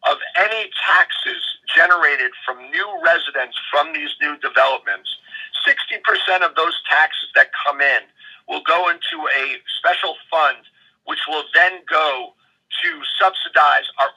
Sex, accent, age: male, American, 50-69